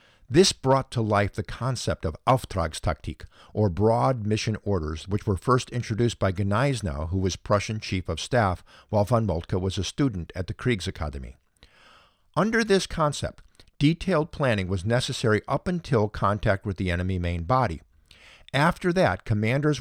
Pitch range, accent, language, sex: 95-130 Hz, American, English, male